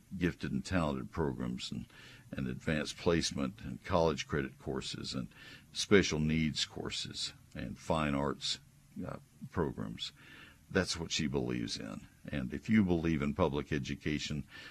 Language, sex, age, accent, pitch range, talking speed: English, male, 60-79, American, 70-95 Hz, 135 wpm